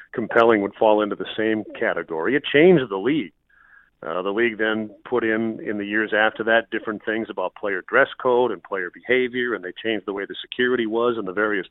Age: 40-59